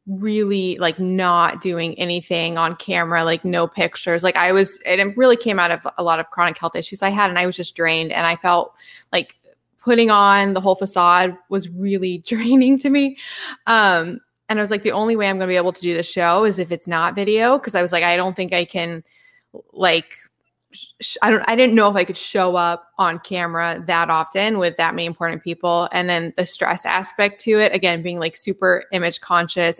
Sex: female